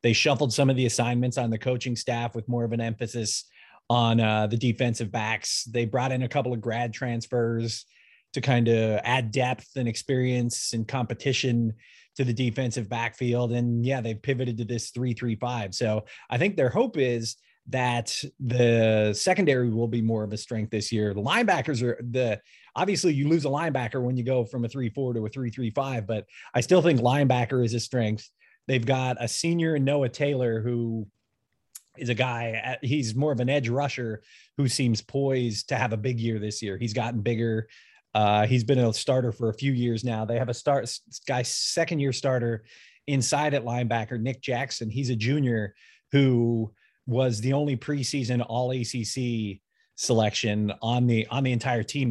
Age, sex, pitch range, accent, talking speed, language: 30-49, male, 115-130 Hz, American, 180 wpm, English